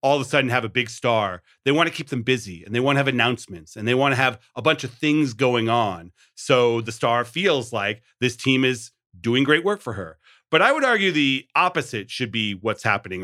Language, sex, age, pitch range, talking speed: English, male, 40-59, 115-150 Hz, 245 wpm